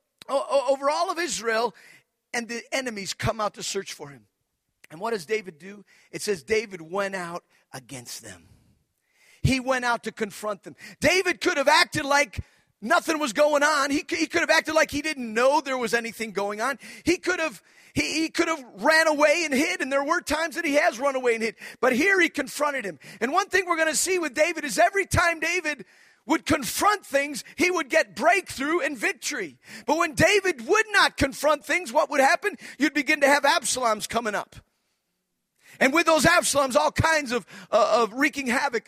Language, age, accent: English, 40-59, American